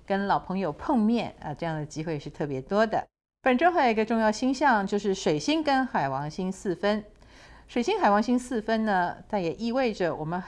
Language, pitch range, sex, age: Chinese, 165-225 Hz, female, 50-69